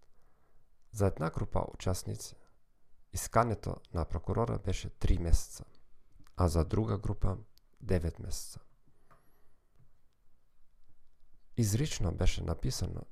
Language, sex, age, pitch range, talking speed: Bulgarian, male, 40-59, 85-110 Hz, 85 wpm